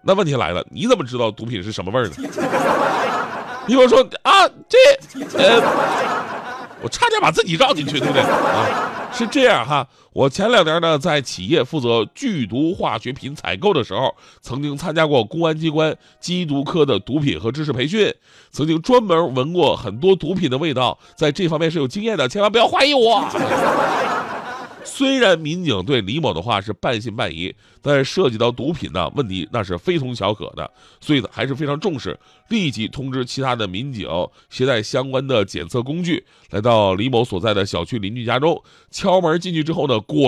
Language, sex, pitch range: Chinese, male, 120-175 Hz